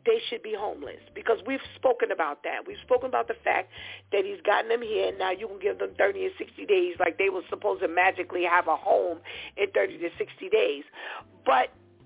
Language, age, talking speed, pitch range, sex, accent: English, 40-59, 220 wpm, 275-400 Hz, female, American